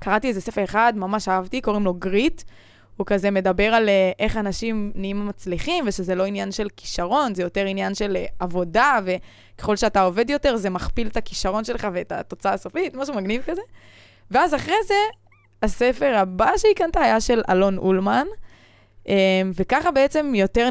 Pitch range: 185-245 Hz